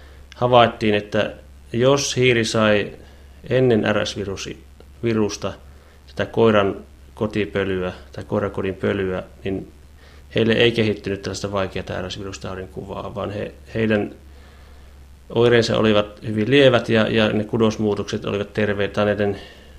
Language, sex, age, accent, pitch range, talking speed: Finnish, male, 30-49, native, 95-105 Hz, 105 wpm